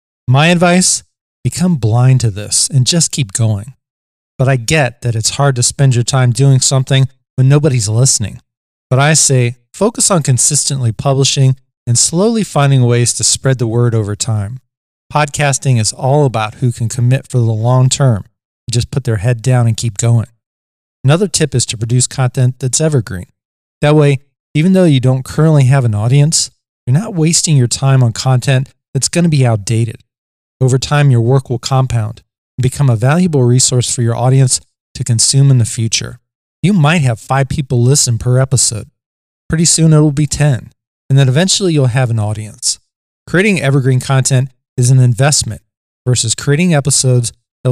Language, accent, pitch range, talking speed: English, American, 120-140 Hz, 180 wpm